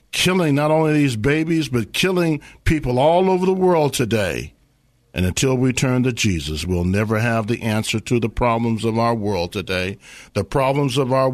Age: 50-69